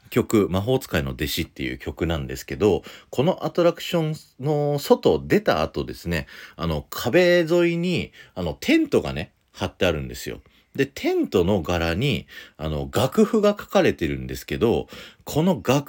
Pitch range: 70-115 Hz